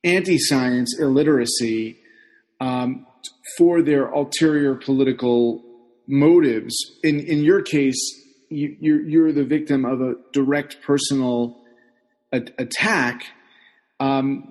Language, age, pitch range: English, 30-49, 125-160 Hz